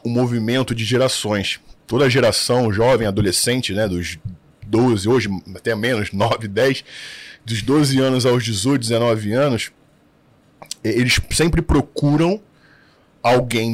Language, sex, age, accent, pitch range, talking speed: Portuguese, male, 20-39, Brazilian, 115-140 Hz, 120 wpm